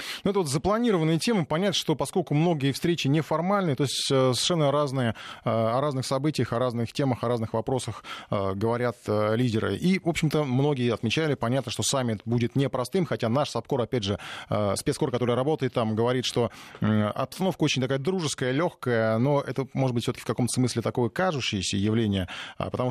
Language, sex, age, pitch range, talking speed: Russian, male, 20-39, 115-145 Hz, 170 wpm